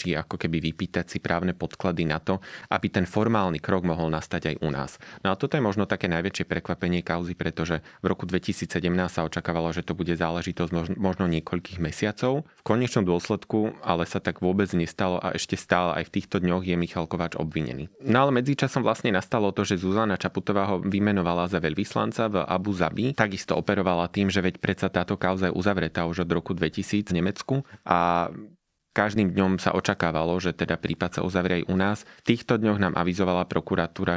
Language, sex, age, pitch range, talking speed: Slovak, male, 30-49, 85-100 Hz, 190 wpm